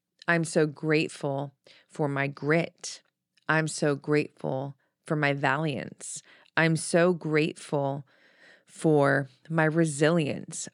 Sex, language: female, English